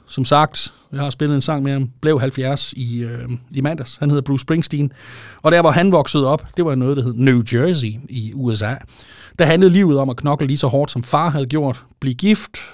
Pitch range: 125-155 Hz